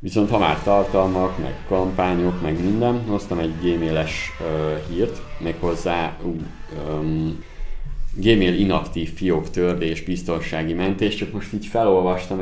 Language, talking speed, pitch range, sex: Hungarian, 125 wpm, 80-100 Hz, male